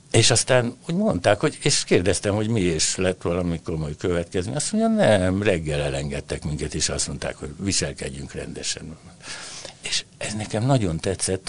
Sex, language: male, Hungarian